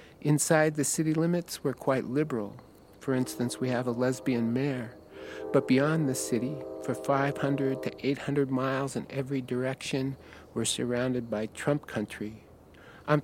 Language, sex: English, male